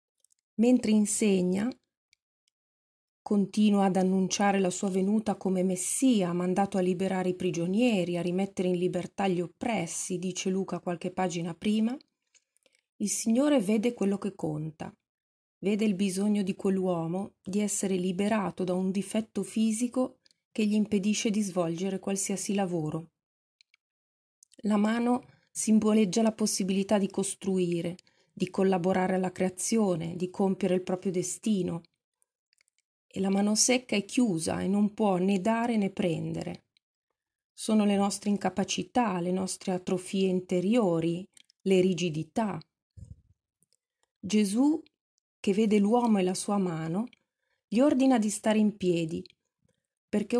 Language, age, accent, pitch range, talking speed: Italian, 30-49, native, 185-220 Hz, 125 wpm